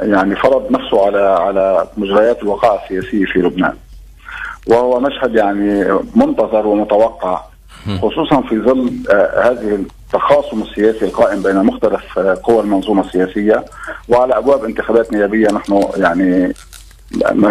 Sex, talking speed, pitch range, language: male, 125 wpm, 100-115 Hz, Arabic